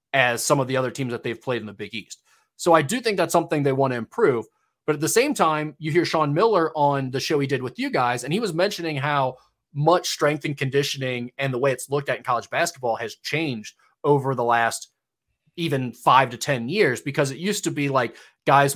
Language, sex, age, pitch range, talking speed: English, male, 20-39, 130-150 Hz, 240 wpm